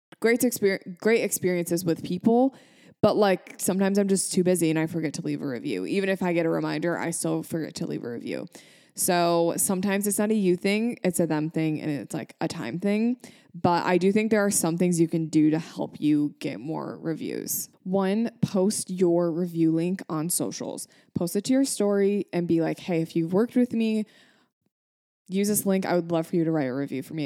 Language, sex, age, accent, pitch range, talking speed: English, female, 20-39, American, 165-210 Hz, 225 wpm